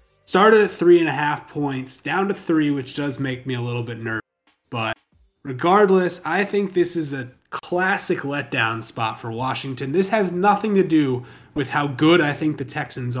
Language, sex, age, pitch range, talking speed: English, male, 20-39, 125-175 Hz, 190 wpm